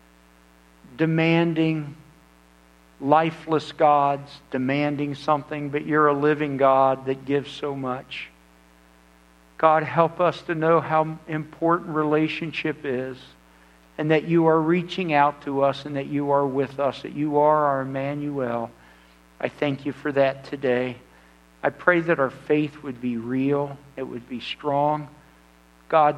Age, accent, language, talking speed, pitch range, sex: 60-79, American, English, 140 wpm, 120-155 Hz, male